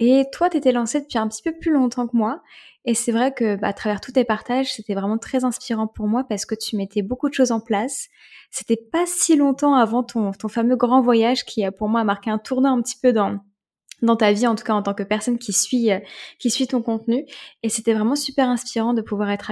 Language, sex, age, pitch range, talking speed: French, female, 20-39, 215-260 Hz, 260 wpm